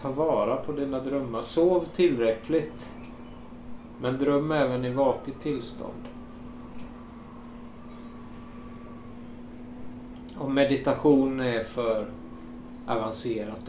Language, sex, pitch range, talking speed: Swedish, male, 110-135 Hz, 80 wpm